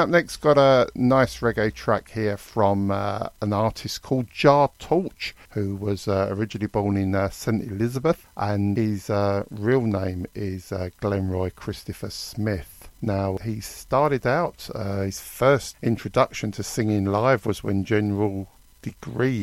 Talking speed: 150 wpm